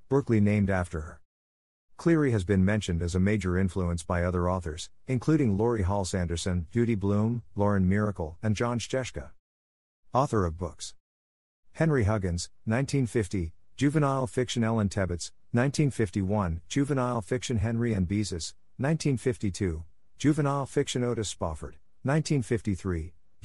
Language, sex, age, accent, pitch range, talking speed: English, male, 50-69, American, 90-130 Hz, 120 wpm